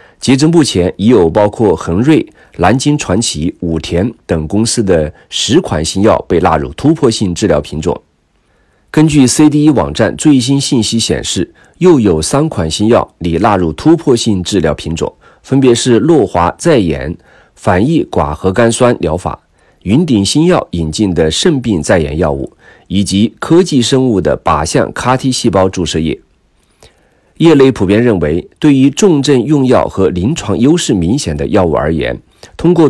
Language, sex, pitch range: Chinese, male, 85-135 Hz